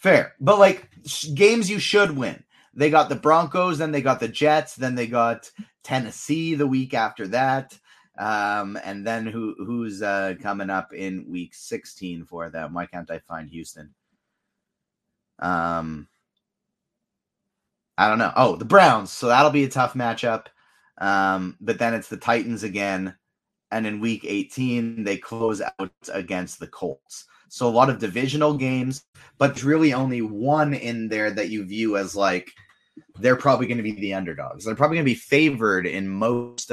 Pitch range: 95-130 Hz